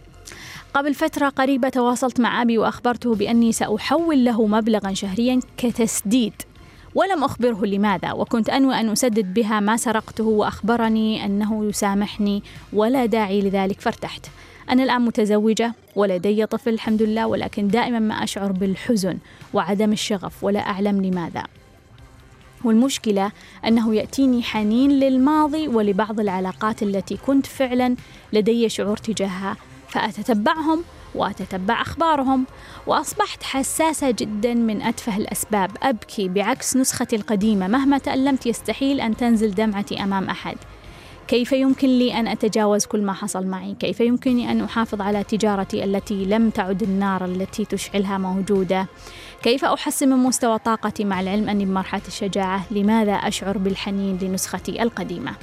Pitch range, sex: 200-245 Hz, female